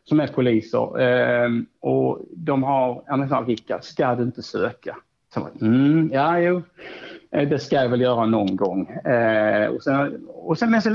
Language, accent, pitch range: Swedish, Norwegian, 125-160 Hz